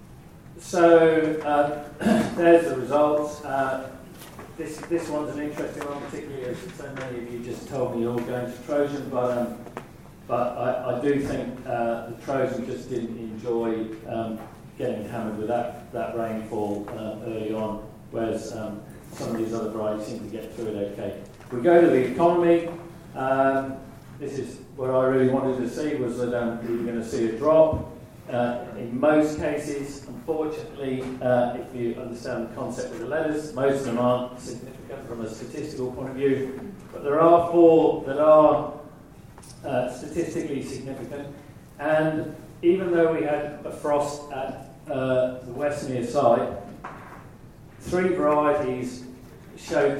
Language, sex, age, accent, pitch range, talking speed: English, male, 40-59, British, 120-150 Hz, 160 wpm